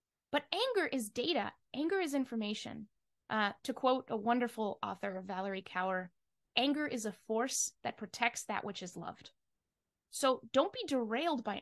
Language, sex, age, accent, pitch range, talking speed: English, female, 20-39, American, 215-290 Hz, 155 wpm